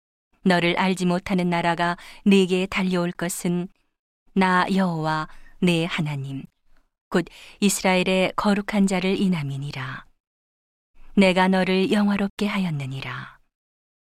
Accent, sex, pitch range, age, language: native, female, 165-195 Hz, 40-59, Korean